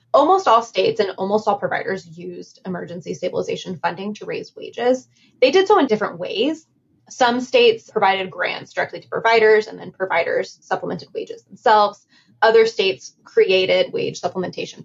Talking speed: 155 wpm